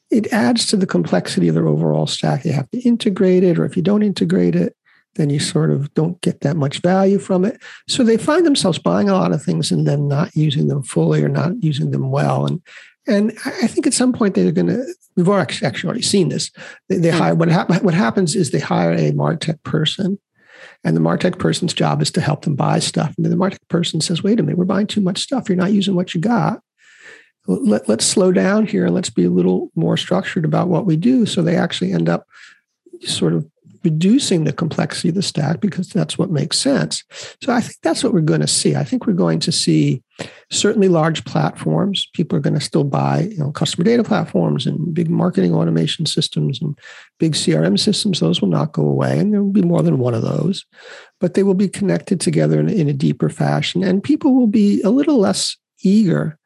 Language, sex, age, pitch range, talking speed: English, male, 50-69, 155-200 Hz, 225 wpm